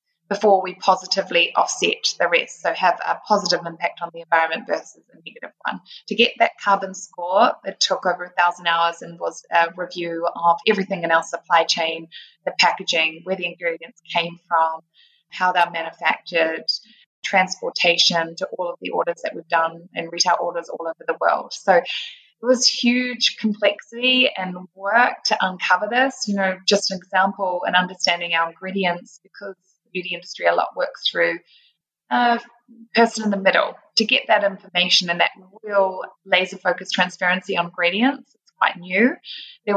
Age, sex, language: 20-39, female, English